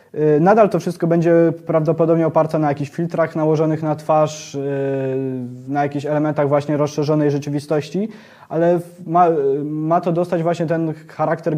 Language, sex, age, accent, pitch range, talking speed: Polish, male, 20-39, native, 145-170 Hz, 135 wpm